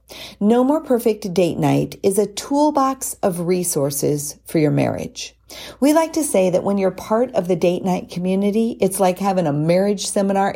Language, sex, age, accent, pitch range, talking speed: English, female, 40-59, American, 150-205 Hz, 180 wpm